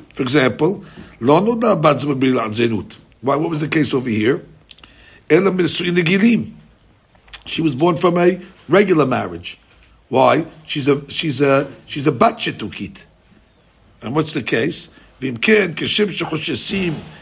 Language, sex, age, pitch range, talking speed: English, male, 60-79, 130-165 Hz, 140 wpm